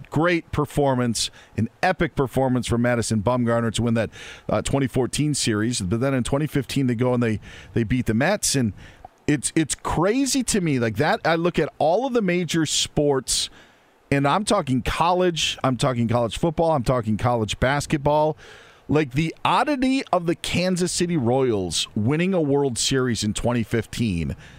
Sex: male